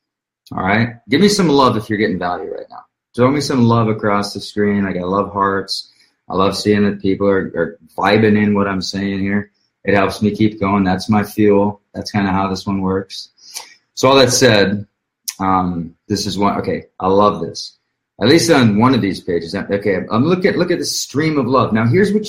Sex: male